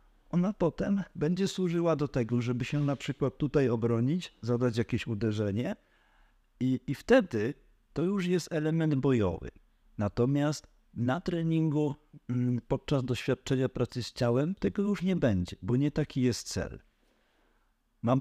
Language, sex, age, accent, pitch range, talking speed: Polish, male, 50-69, native, 95-125 Hz, 135 wpm